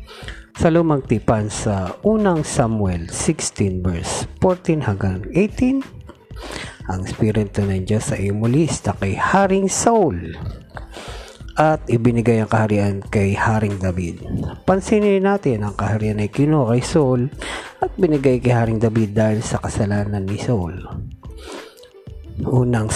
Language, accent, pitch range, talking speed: Filipino, native, 105-135 Hz, 115 wpm